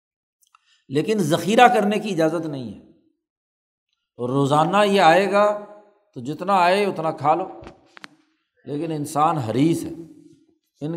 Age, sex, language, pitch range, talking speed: 60-79, male, Urdu, 145-185 Hz, 125 wpm